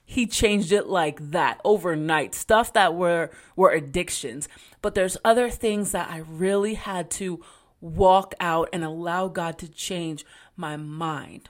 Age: 30-49